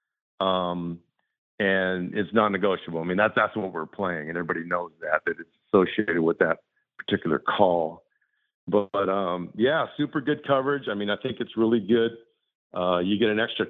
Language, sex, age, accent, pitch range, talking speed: English, male, 50-69, American, 95-110 Hz, 180 wpm